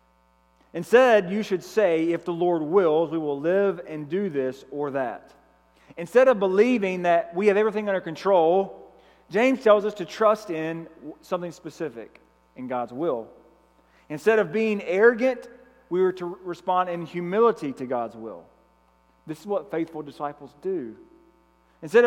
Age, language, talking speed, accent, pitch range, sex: 40-59, English, 150 wpm, American, 115-190 Hz, male